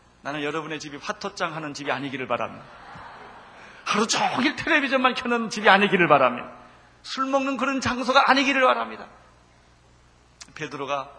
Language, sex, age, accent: Korean, male, 30-49, native